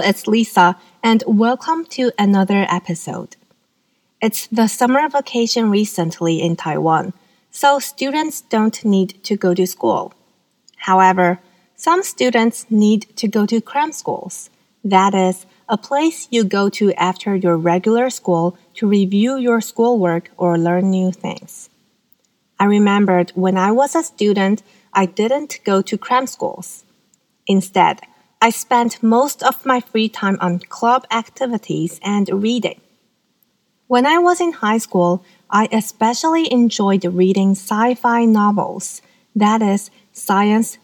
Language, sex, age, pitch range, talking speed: English, female, 30-49, 190-240 Hz, 135 wpm